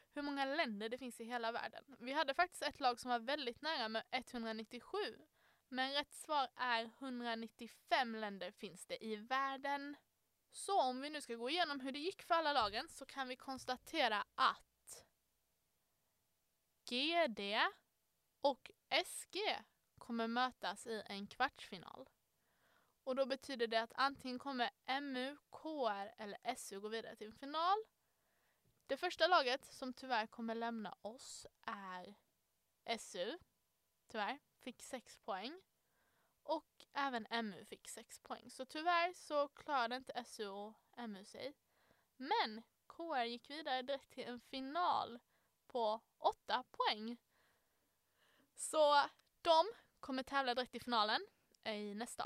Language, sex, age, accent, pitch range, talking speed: Swedish, female, 20-39, native, 225-285 Hz, 140 wpm